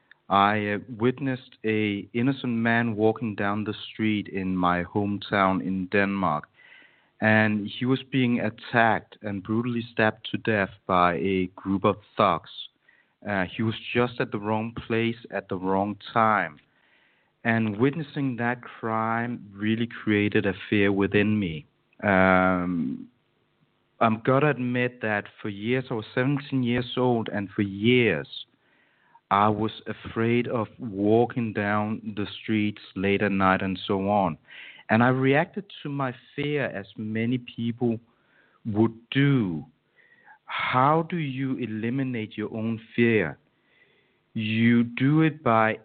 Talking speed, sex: 135 wpm, male